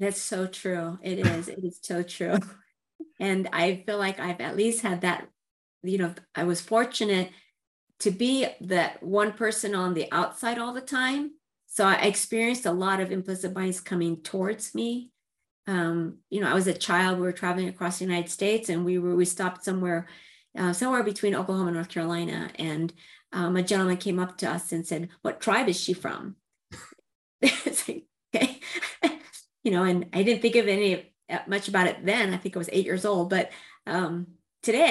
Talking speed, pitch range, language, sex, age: 195 wpm, 175-210 Hz, English, female, 50-69